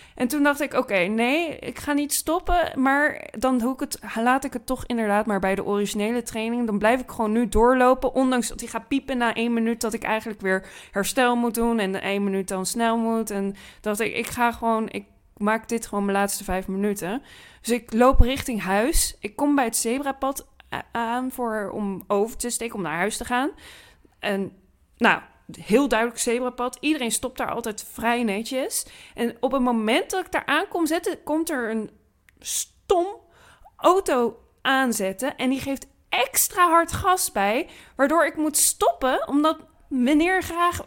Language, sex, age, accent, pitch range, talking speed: Dutch, female, 20-39, Dutch, 225-300 Hz, 190 wpm